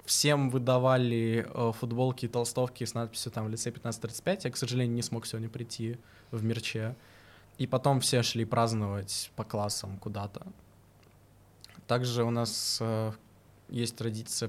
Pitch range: 110-125 Hz